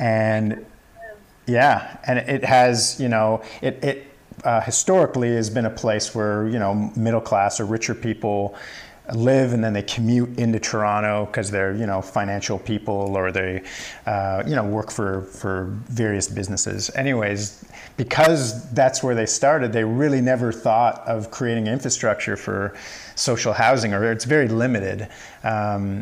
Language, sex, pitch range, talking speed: English, male, 105-125 Hz, 155 wpm